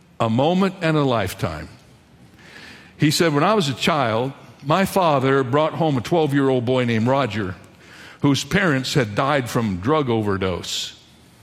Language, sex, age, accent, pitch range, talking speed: English, male, 60-79, American, 120-160 Hz, 145 wpm